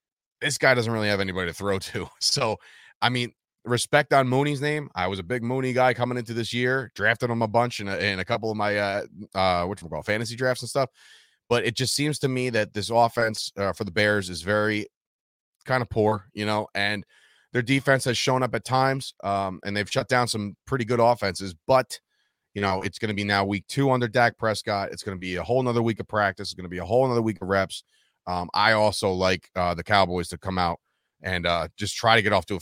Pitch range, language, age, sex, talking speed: 95-120 Hz, English, 30-49, male, 245 wpm